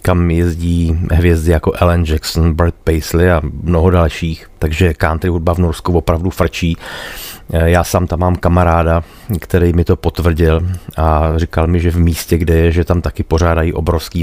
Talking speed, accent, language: 170 wpm, native, Czech